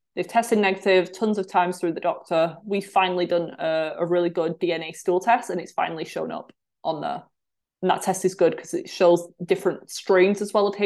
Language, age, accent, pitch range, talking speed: English, 20-39, British, 170-200 Hz, 215 wpm